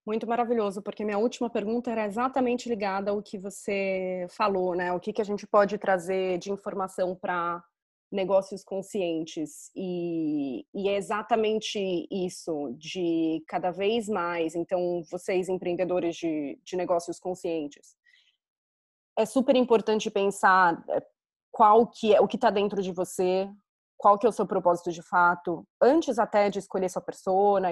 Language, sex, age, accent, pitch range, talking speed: Portuguese, female, 20-39, Brazilian, 180-220 Hz, 150 wpm